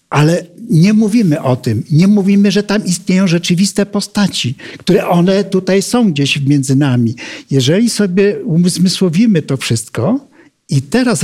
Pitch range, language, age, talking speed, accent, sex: 150-210 Hz, Polish, 60-79, 140 wpm, native, male